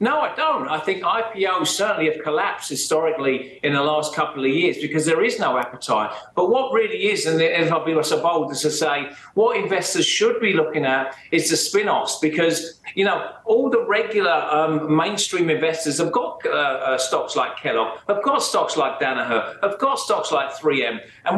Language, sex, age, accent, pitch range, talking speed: English, male, 40-59, British, 150-200 Hz, 200 wpm